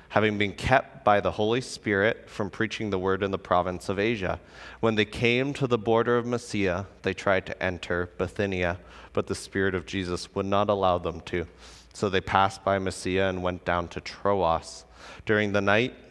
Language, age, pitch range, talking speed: English, 30-49, 90-115 Hz, 195 wpm